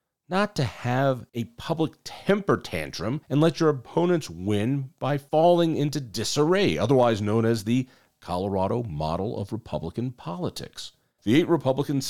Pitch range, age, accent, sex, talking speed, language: 105-150 Hz, 40-59, American, male, 140 wpm, English